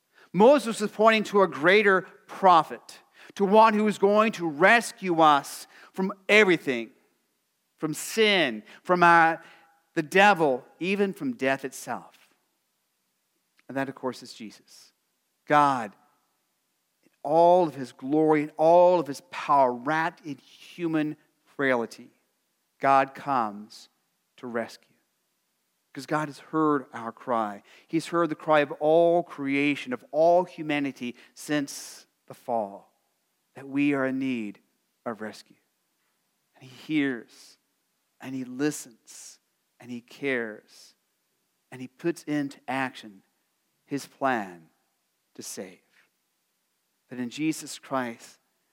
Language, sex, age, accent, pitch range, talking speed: English, male, 40-59, American, 130-170 Hz, 125 wpm